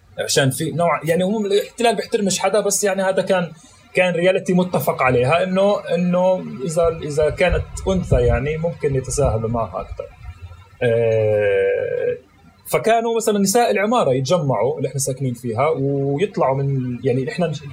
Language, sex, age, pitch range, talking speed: Arabic, male, 30-49, 130-205 Hz, 135 wpm